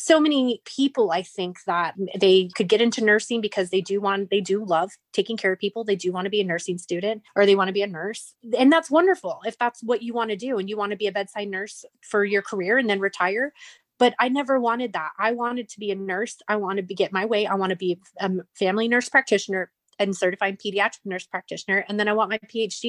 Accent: American